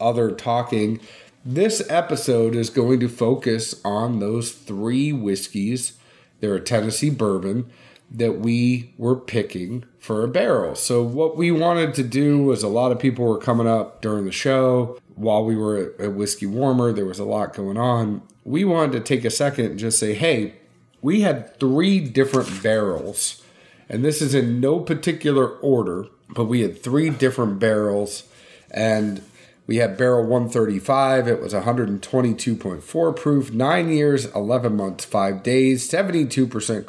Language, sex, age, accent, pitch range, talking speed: English, male, 40-59, American, 110-135 Hz, 155 wpm